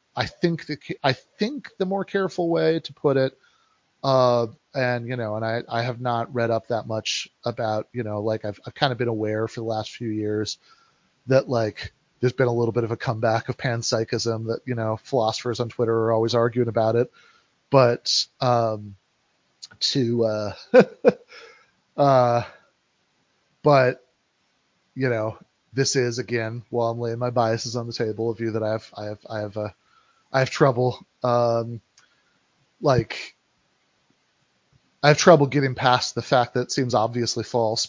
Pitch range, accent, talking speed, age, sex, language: 115-140 Hz, American, 175 wpm, 30-49, male, English